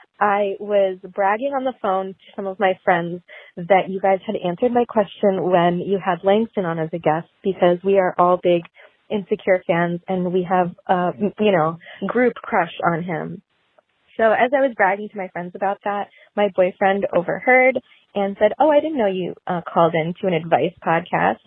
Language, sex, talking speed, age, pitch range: English, female, 195 wpm, 20-39, 180-220 Hz